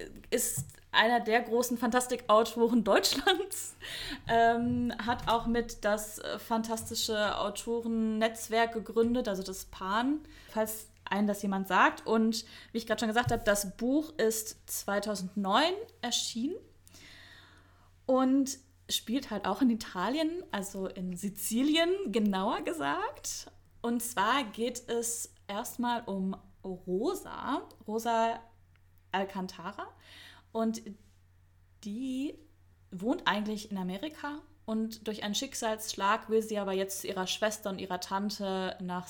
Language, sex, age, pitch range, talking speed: German, female, 20-39, 190-235 Hz, 115 wpm